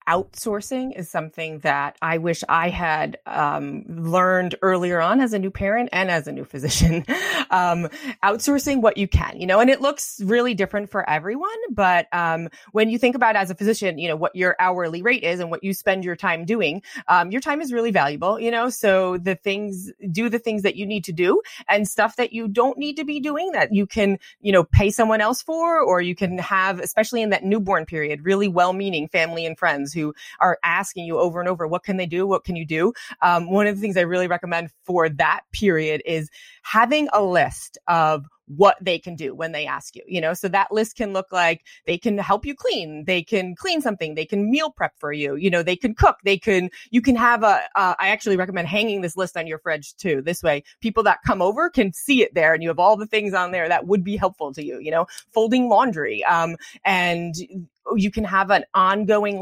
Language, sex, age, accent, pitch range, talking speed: English, female, 30-49, American, 170-215 Hz, 230 wpm